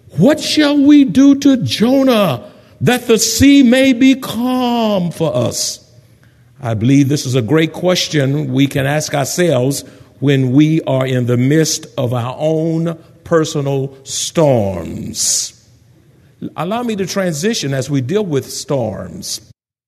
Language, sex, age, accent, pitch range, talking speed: English, male, 60-79, American, 120-160 Hz, 135 wpm